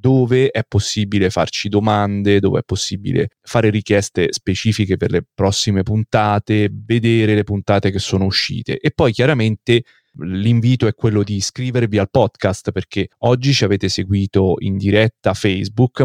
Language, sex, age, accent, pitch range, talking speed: Italian, male, 30-49, native, 100-115 Hz, 145 wpm